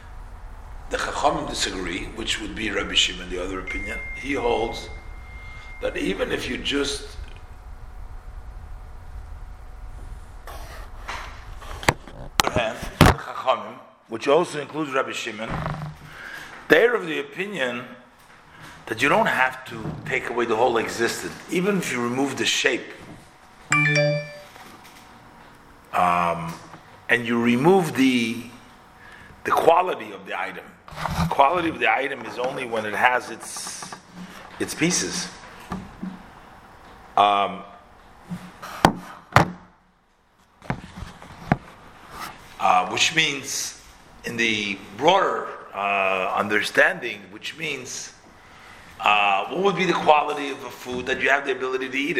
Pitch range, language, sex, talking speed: 95-150 Hz, English, male, 110 wpm